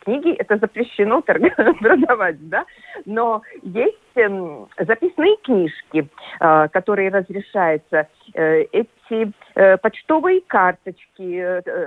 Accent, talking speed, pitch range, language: native, 70 wpm, 185-250 Hz, Russian